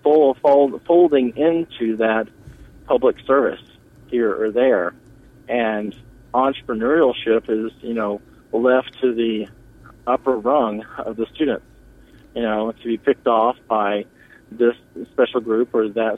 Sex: male